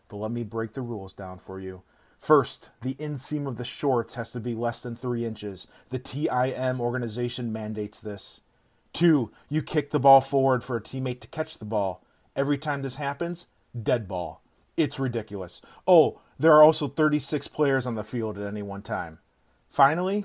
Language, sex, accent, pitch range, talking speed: English, male, American, 115-155 Hz, 185 wpm